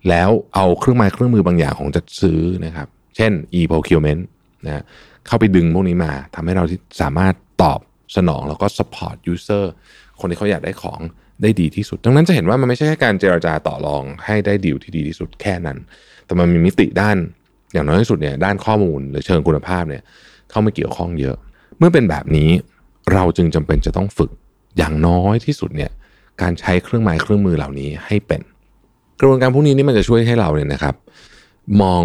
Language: Thai